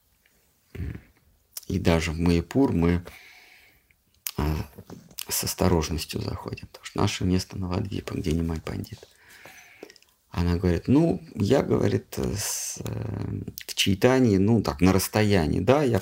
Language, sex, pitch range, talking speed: Russian, male, 90-105 Hz, 125 wpm